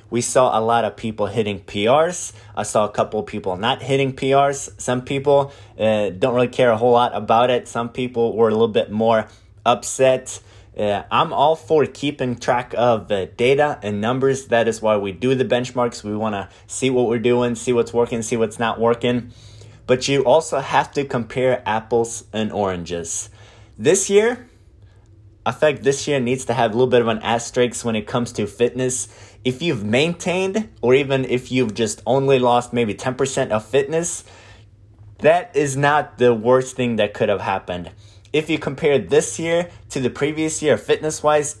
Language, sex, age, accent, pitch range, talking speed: English, male, 20-39, American, 105-135 Hz, 185 wpm